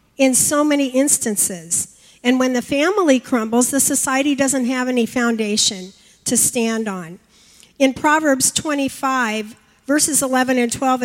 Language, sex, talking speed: English, female, 135 wpm